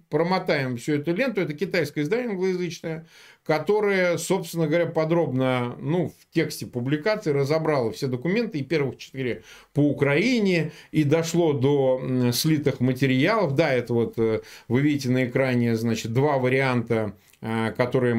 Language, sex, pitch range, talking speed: Russian, male, 135-185 Hz, 130 wpm